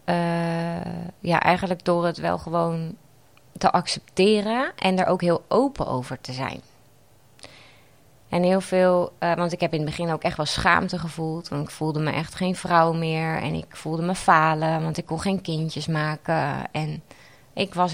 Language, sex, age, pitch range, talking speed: English, female, 20-39, 145-175 Hz, 180 wpm